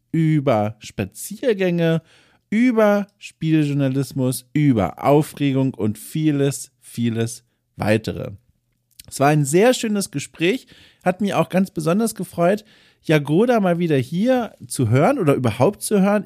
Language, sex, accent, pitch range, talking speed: German, male, German, 135-180 Hz, 120 wpm